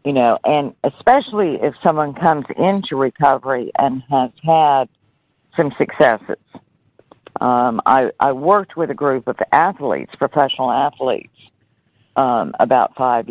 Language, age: English, 50-69